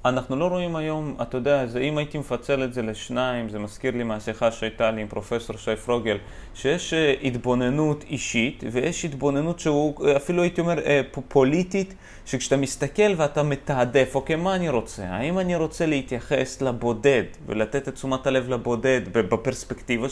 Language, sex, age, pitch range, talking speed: Hebrew, male, 30-49, 120-170 Hz, 160 wpm